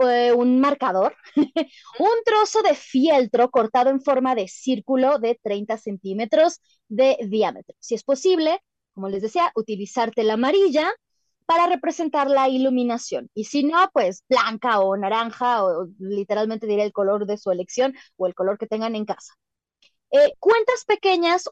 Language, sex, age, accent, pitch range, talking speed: Spanish, female, 20-39, Mexican, 215-310 Hz, 150 wpm